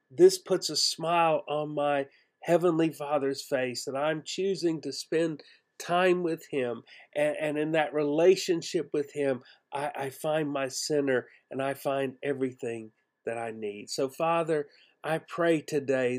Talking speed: 150 wpm